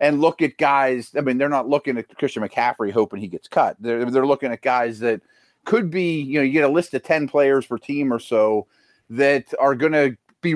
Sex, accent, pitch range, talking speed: male, American, 125-145 Hz, 240 wpm